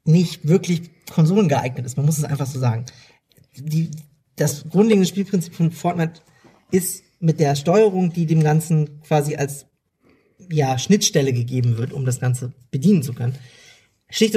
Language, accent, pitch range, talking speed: German, German, 145-175 Hz, 150 wpm